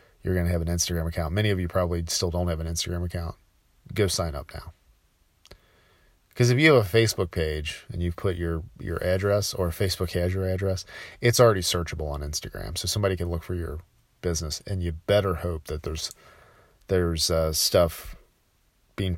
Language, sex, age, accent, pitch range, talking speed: English, male, 40-59, American, 85-100 Hz, 190 wpm